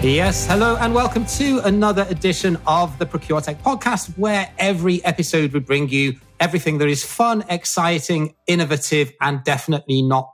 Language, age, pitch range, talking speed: English, 30-49, 140-170 Hz, 150 wpm